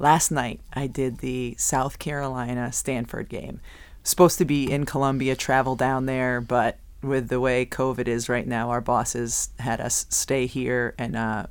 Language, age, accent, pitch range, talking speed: English, 30-49, American, 125-150 Hz, 165 wpm